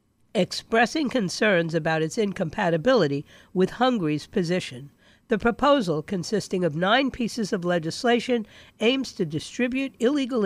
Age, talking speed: 50-69, 115 wpm